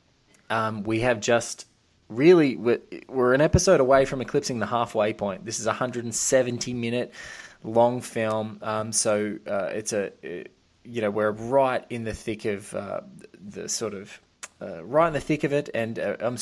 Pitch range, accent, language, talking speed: 105-120 Hz, Australian, English, 180 wpm